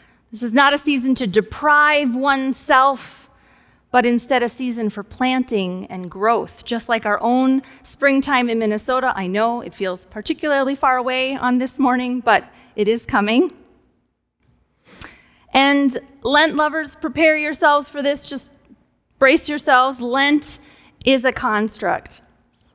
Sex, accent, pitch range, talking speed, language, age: female, American, 230-290 Hz, 135 wpm, English, 30-49